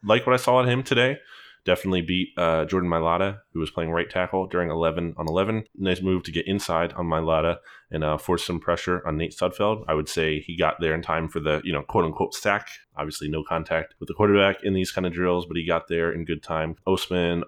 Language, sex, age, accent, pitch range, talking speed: English, male, 20-39, American, 80-90 Hz, 235 wpm